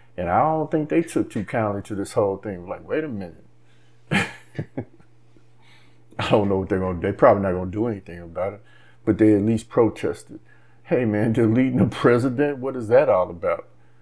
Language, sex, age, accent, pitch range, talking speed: English, male, 50-69, American, 100-115 Hz, 205 wpm